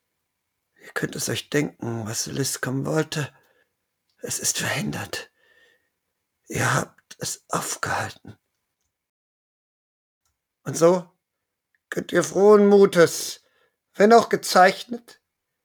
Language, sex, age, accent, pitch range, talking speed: German, male, 50-69, German, 145-175 Hz, 95 wpm